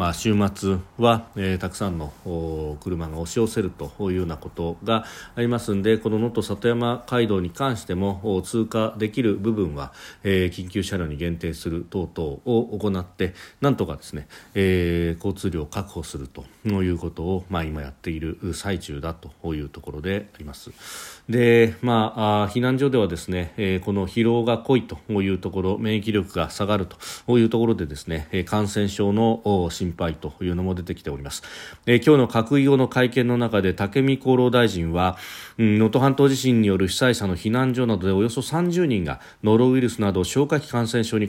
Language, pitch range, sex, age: Japanese, 90-115 Hz, male, 40-59